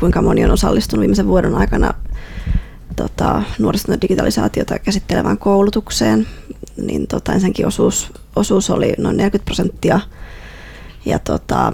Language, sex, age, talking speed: Finnish, female, 20-39, 120 wpm